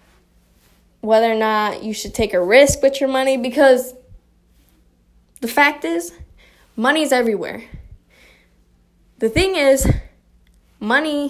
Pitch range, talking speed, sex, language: 210-260 Hz, 115 wpm, female, English